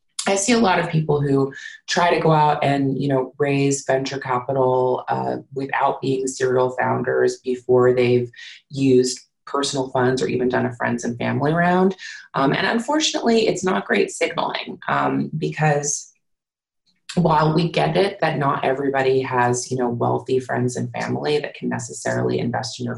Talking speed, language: 165 wpm, English